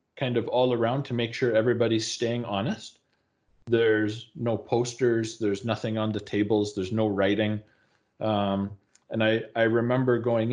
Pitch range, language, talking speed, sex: 105-125 Hz, English, 155 wpm, male